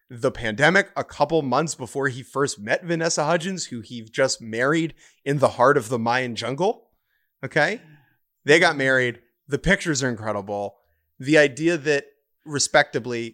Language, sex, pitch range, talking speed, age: English, male, 120-155 Hz, 155 wpm, 30-49